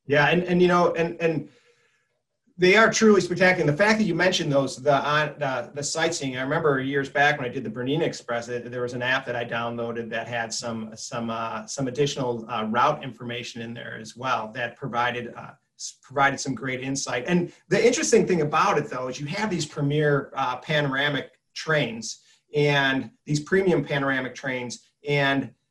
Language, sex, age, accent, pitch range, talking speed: English, male, 30-49, American, 125-160 Hz, 190 wpm